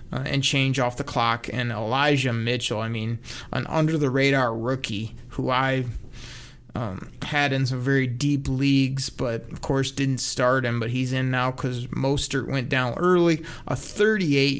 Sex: male